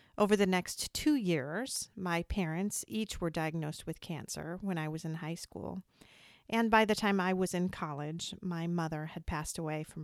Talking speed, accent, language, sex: 190 wpm, American, English, female